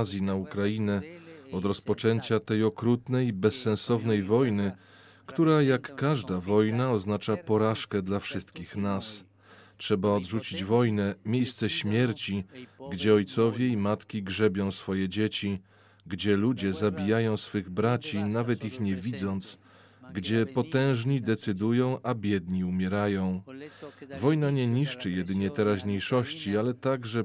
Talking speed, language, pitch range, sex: 115 wpm, Polish, 100-120 Hz, male